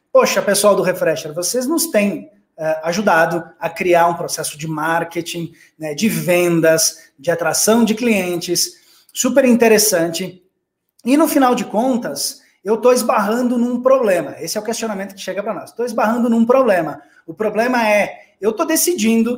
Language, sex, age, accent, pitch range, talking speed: Portuguese, male, 20-39, Brazilian, 175-250 Hz, 160 wpm